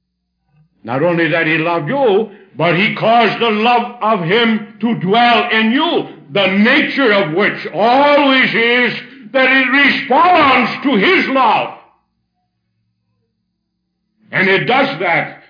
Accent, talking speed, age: American, 130 wpm, 60-79